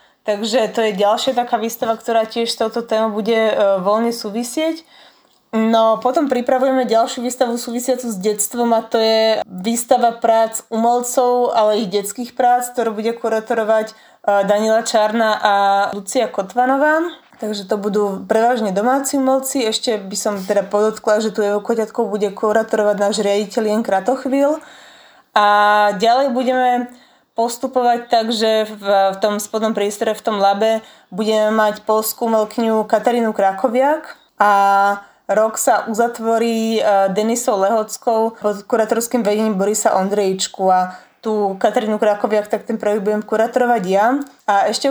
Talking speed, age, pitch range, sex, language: 140 wpm, 20-39, 210-240 Hz, female, Slovak